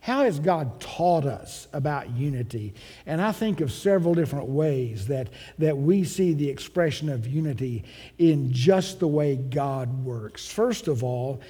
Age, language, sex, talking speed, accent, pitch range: 60-79, English, male, 160 wpm, American, 145-195 Hz